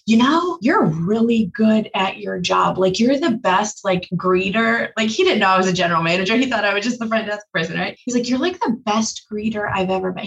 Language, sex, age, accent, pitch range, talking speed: English, female, 20-39, American, 195-230 Hz, 250 wpm